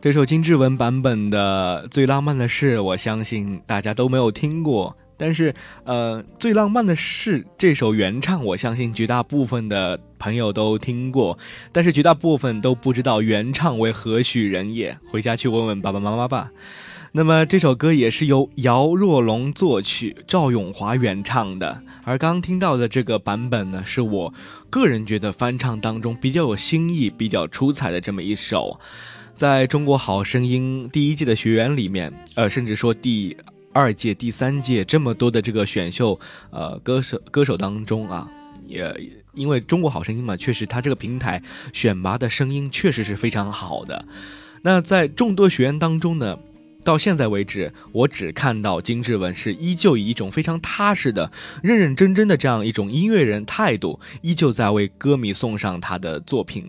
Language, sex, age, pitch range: Chinese, male, 20-39, 105-145 Hz